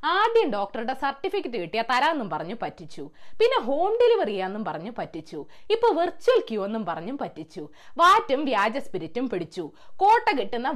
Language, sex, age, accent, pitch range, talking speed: Malayalam, female, 20-39, native, 230-365 Hz, 135 wpm